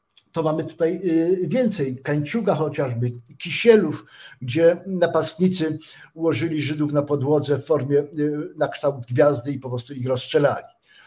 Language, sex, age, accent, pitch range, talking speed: Polish, male, 50-69, native, 145-180 Hz, 125 wpm